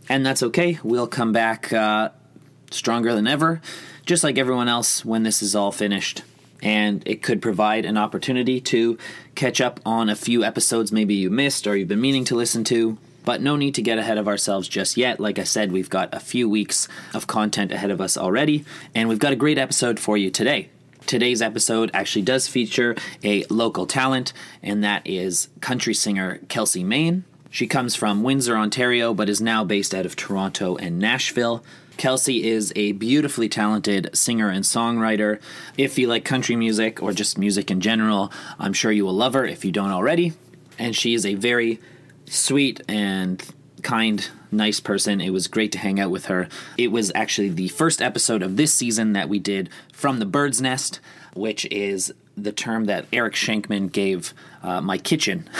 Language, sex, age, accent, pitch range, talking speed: English, male, 30-49, American, 105-125 Hz, 190 wpm